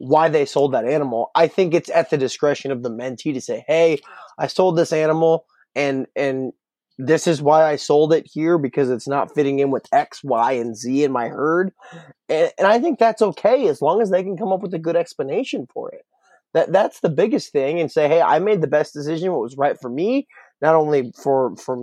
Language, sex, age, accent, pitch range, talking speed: English, male, 20-39, American, 145-195 Hz, 230 wpm